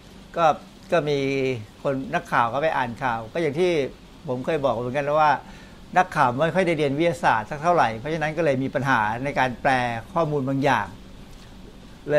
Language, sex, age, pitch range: Thai, male, 60-79, 130-170 Hz